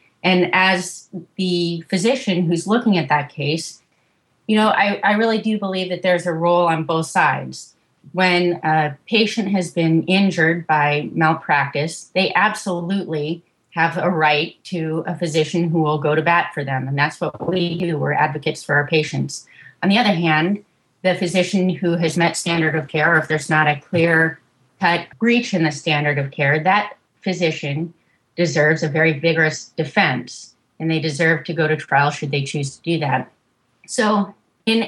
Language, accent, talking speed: English, American, 175 wpm